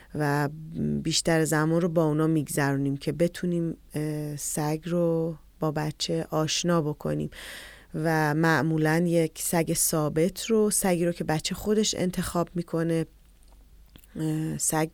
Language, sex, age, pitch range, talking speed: Persian, female, 30-49, 155-175 Hz, 115 wpm